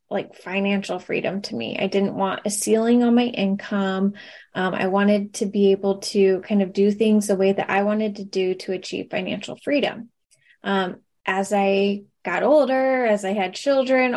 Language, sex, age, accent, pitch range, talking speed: English, female, 10-29, American, 195-220 Hz, 185 wpm